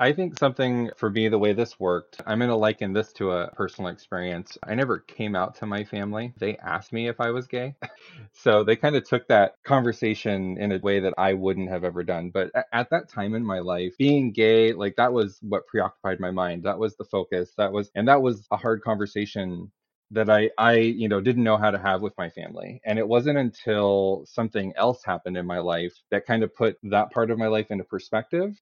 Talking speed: 230 wpm